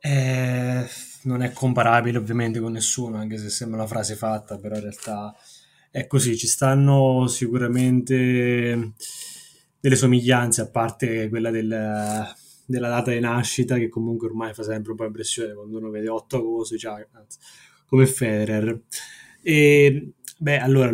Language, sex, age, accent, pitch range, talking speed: Italian, male, 10-29, native, 110-130 Hz, 145 wpm